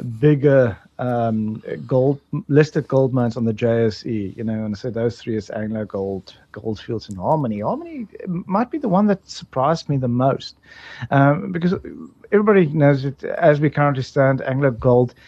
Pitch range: 120-170 Hz